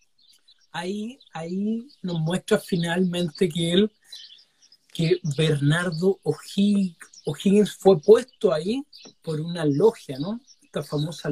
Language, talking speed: Spanish, 100 wpm